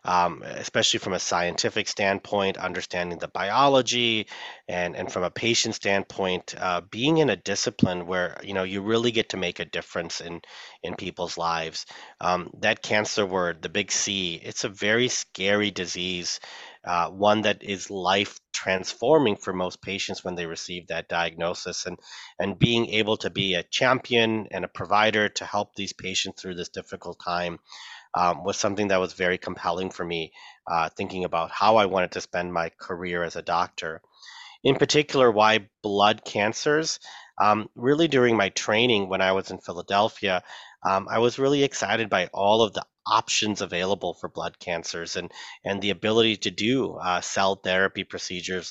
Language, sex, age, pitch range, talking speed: English, male, 30-49, 90-110 Hz, 170 wpm